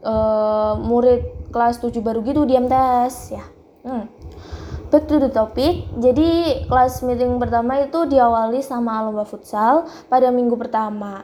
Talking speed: 140 wpm